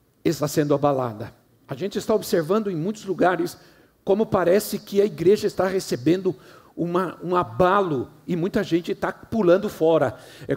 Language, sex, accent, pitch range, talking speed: Portuguese, male, Brazilian, 150-190 Hz, 150 wpm